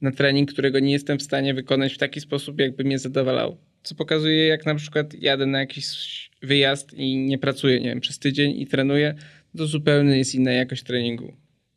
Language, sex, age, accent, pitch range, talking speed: Polish, male, 20-39, native, 135-150 Hz, 195 wpm